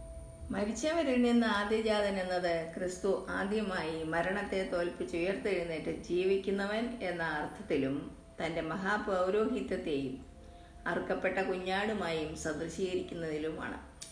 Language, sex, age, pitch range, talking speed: Malayalam, female, 50-69, 170-220 Hz, 65 wpm